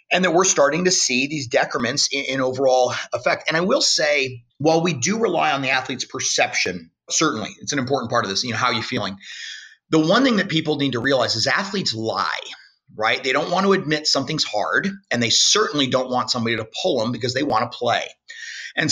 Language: English